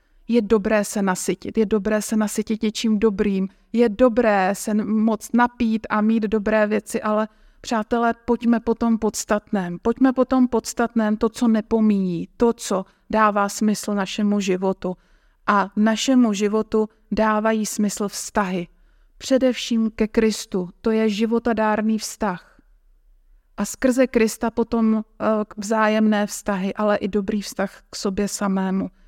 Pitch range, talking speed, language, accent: 205-235 Hz, 135 wpm, Czech, native